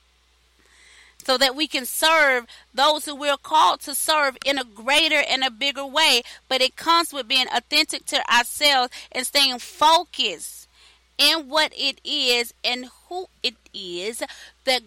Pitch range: 220-305 Hz